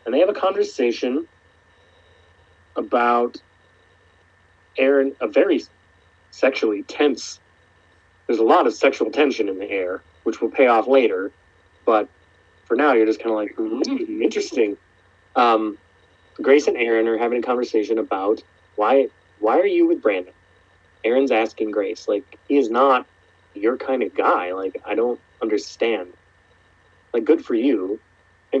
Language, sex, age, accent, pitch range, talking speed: English, male, 30-49, American, 90-140 Hz, 145 wpm